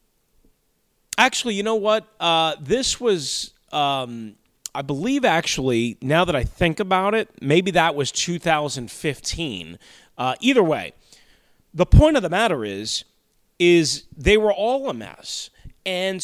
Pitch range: 140-195 Hz